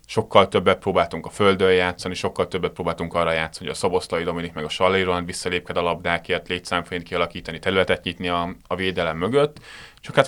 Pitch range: 90-105 Hz